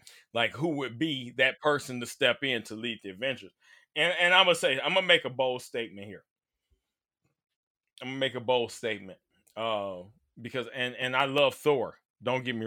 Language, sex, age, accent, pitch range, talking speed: English, male, 20-39, American, 125-160 Hz, 190 wpm